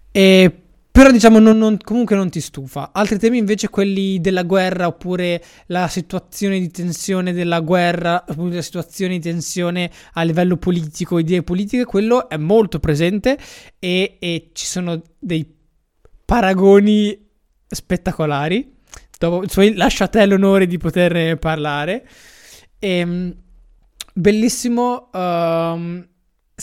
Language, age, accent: Italian, 20-39, native